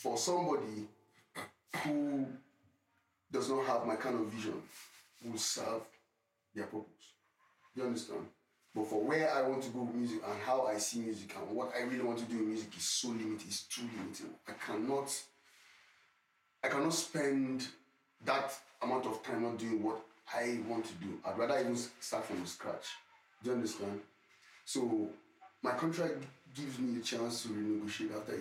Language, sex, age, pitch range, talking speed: English, male, 30-49, 100-120 Hz, 170 wpm